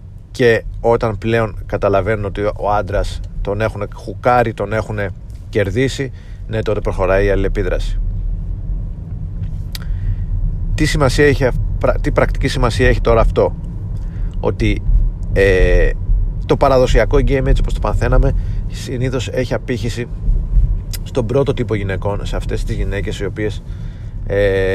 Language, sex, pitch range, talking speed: Greek, male, 95-110 Hz, 125 wpm